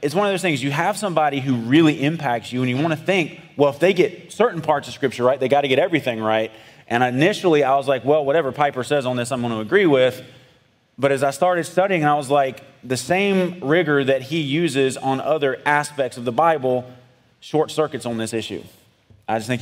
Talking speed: 230 wpm